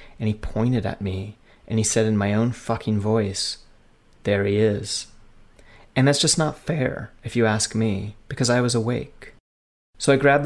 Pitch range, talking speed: 100-120 Hz, 185 wpm